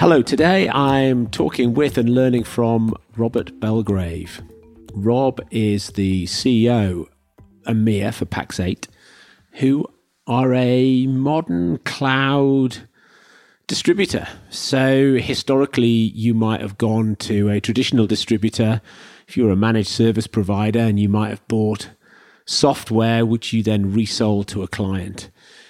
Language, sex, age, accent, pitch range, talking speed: English, male, 40-59, British, 105-125 Hz, 120 wpm